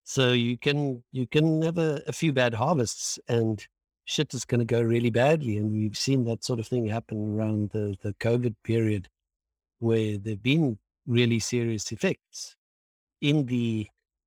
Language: English